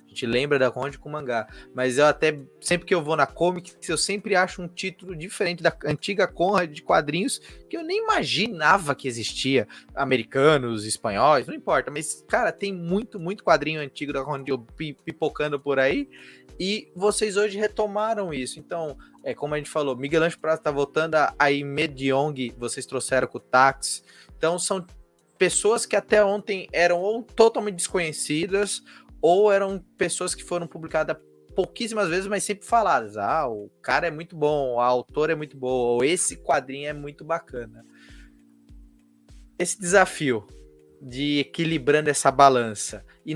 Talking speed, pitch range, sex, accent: 160 wpm, 135-180 Hz, male, Brazilian